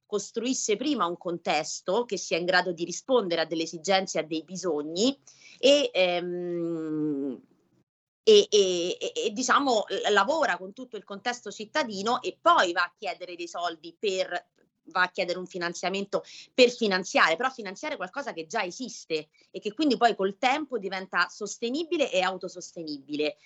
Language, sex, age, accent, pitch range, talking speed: Italian, female, 30-49, native, 170-220 Hz, 145 wpm